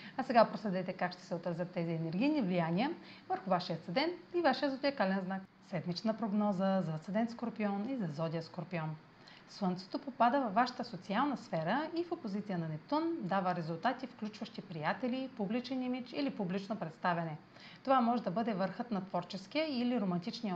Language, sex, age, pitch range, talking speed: Bulgarian, female, 40-59, 180-250 Hz, 160 wpm